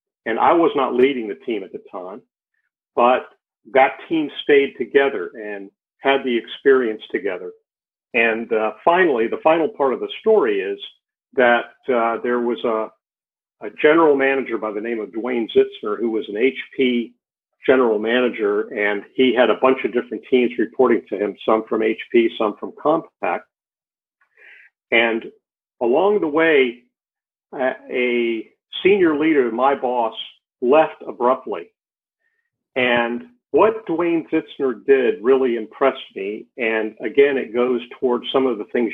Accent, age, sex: American, 50-69, male